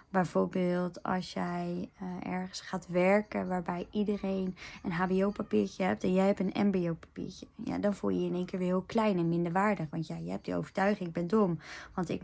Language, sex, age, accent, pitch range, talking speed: Dutch, female, 20-39, Dutch, 180-210 Hz, 205 wpm